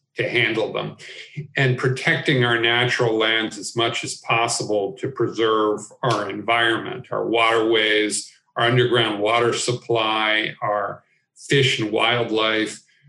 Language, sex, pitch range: English, male, 115-140 Hz